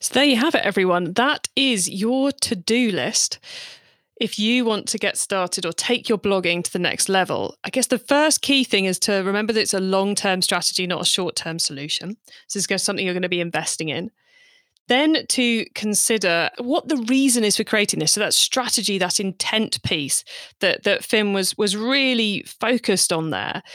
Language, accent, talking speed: English, British, 200 wpm